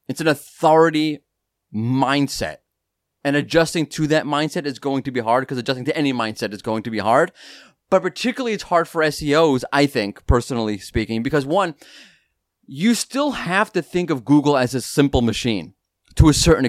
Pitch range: 125-170 Hz